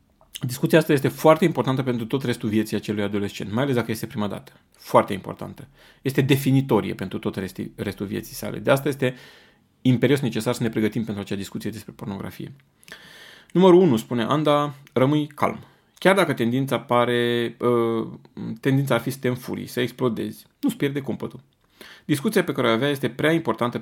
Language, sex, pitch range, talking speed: Romanian, male, 110-140 Hz, 170 wpm